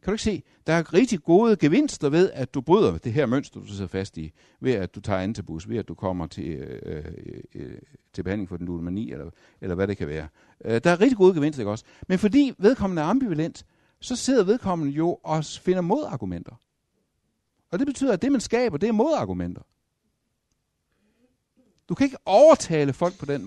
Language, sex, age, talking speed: Danish, male, 60-79, 200 wpm